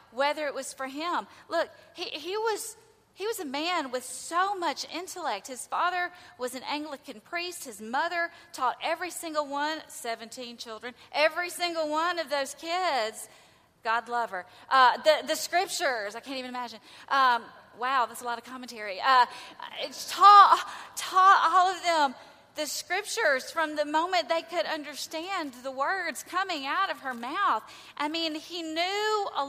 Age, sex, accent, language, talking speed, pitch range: 30-49, female, American, English, 165 wpm, 240-330 Hz